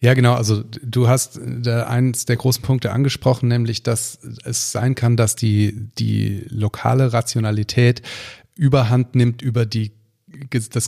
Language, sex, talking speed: German, male, 145 wpm